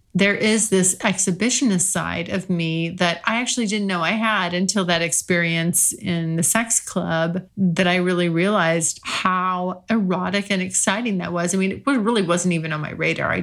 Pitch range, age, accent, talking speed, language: 170-220 Hz, 40-59, American, 185 wpm, English